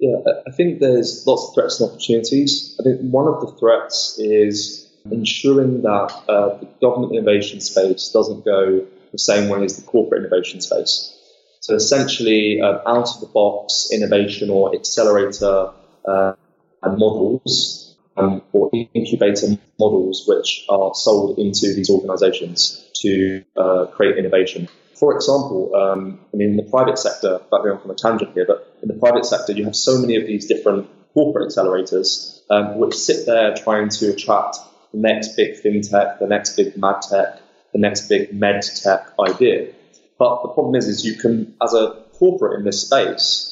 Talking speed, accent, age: 165 wpm, British, 20-39